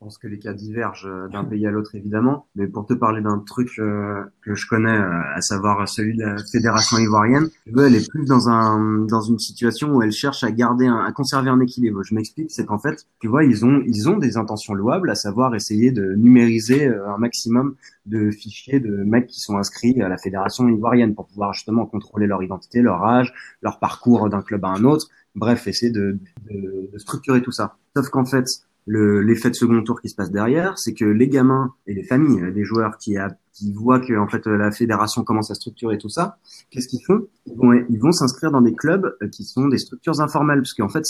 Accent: French